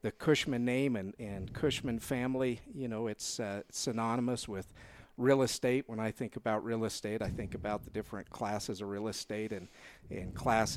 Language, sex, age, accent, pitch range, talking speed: English, male, 50-69, American, 105-125 Hz, 185 wpm